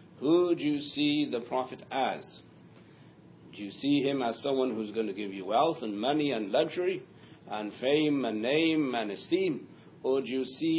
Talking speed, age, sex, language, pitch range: 185 wpm, 60-79, male, English, 115-150 Hz